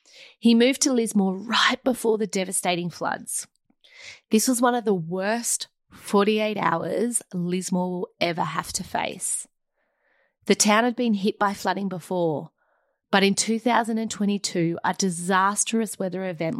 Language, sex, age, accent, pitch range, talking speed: English, female, 30-49, Australian, 180-215 Hz, 135 wpm